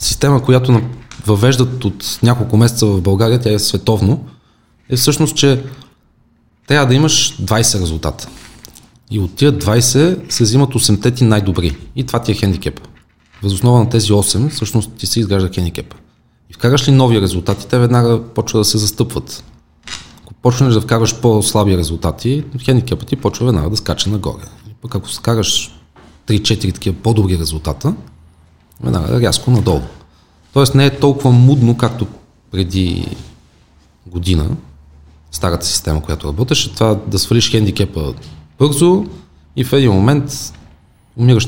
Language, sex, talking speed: Bulgarian, male, 145 wpm